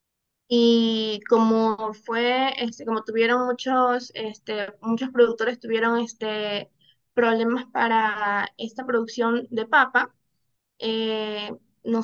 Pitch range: 210-235 Hz